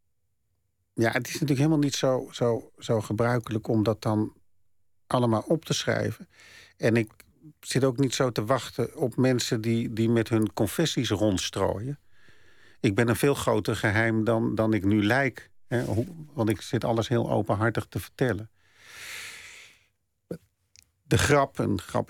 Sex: male